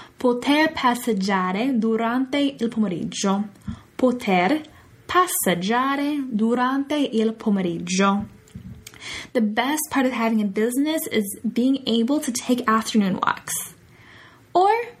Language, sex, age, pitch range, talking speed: Italian, female, 10-29, 215-295 Hz, 100 wpm